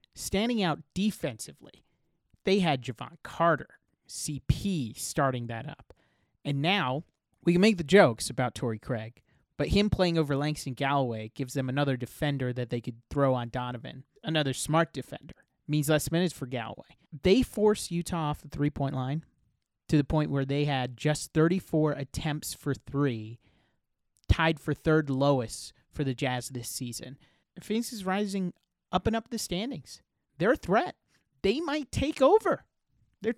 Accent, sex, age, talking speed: American, male, 30-49, 160 wpm